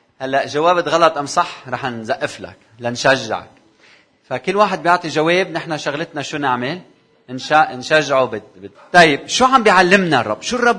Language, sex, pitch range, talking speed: Arabic, male, 125-180 Hz, 155 wpm